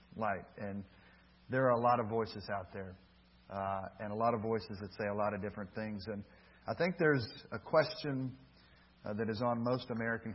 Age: 40-59